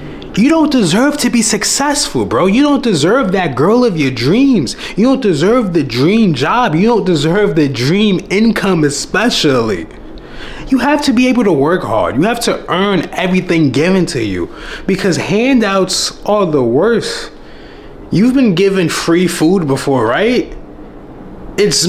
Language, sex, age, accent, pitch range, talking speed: English, male, 20-39, American, 175-235 Hz, 155 wpm